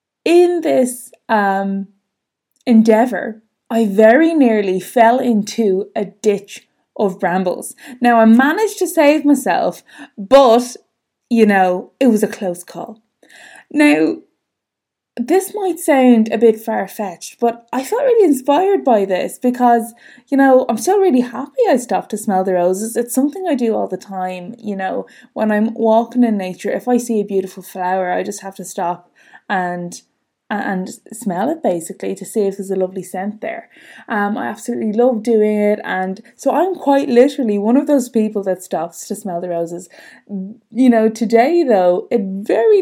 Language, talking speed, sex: English, 170 wpm, female